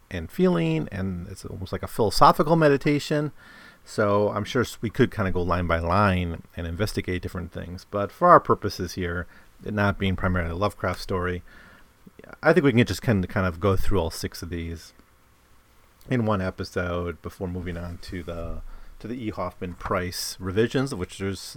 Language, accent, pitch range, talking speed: English, American, 90-110 Hz, 185 wpm